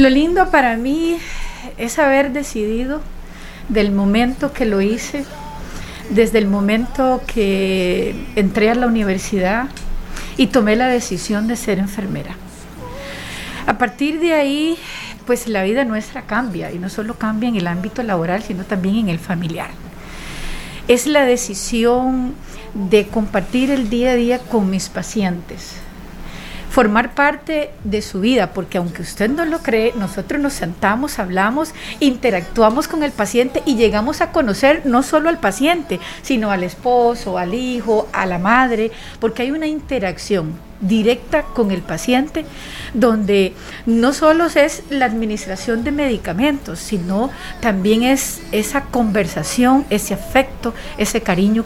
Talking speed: 140 wpm